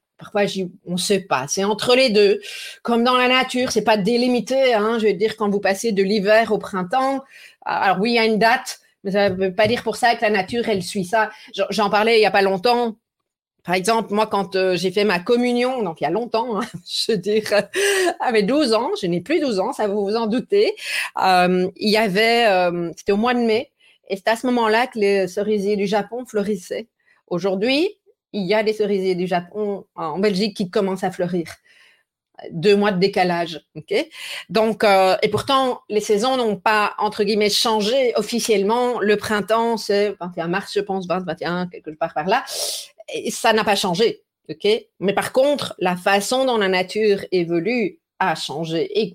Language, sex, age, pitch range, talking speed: French, female, 30-49, 195-235 Hz, 205 wpm